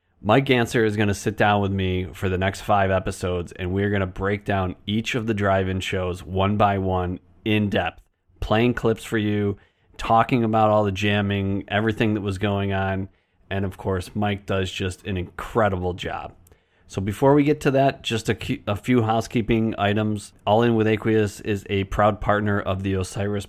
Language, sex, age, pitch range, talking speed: English, male, 30-49, 95-110 Hz, 190 wpm